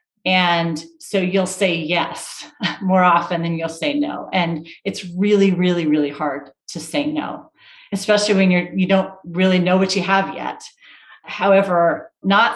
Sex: female